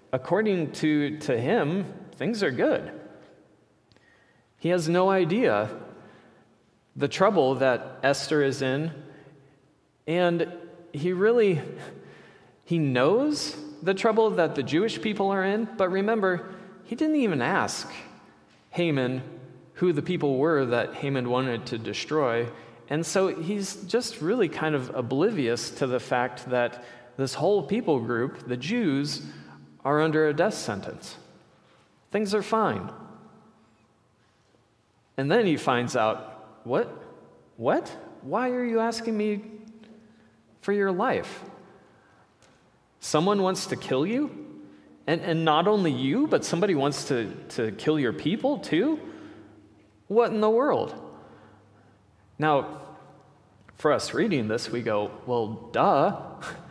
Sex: male